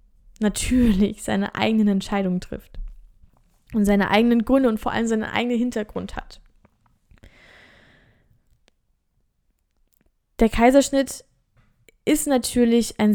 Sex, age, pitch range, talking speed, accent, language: female, 20-39, 200-230 Hz, 95 wpm, German, German